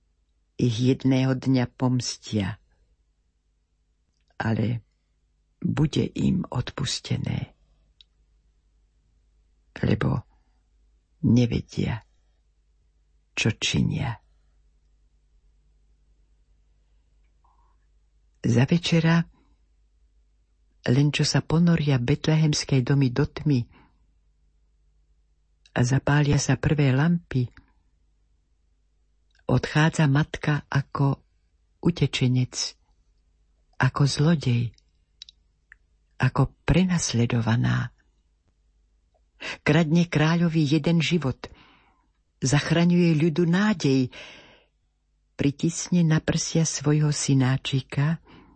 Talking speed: 60 wpm